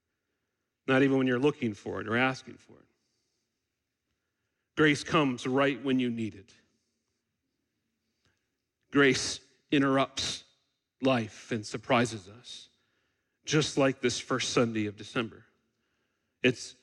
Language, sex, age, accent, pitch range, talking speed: English, male, 40-59, American, 120-150 Hz, 115 wpm